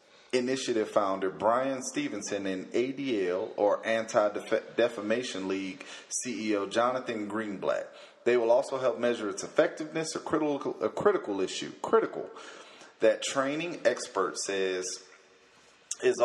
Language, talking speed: English, 110 wpm